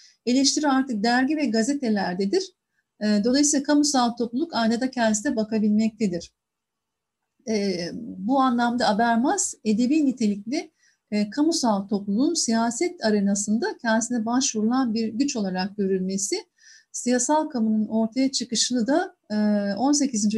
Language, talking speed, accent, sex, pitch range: Turkish, 95 wpm, native, female, 205-245 Hz